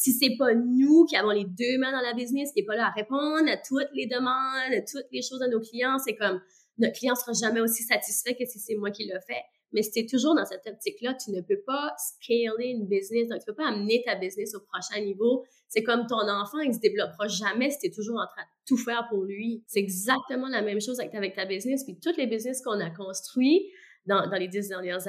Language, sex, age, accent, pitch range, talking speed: French, female, 20-39, Canadian, 200-260 Hz, 260 wpm